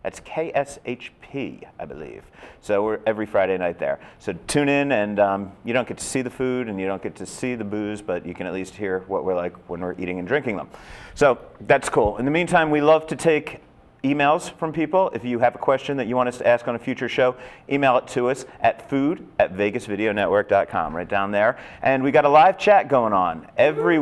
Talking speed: 235 wpm